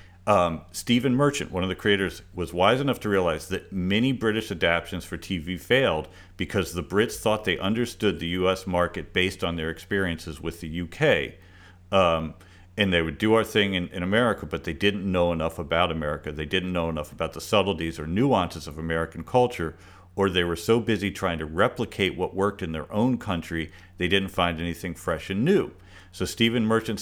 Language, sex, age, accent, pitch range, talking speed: English, male, 50-69, American, 85-105 Hz, 195 wpm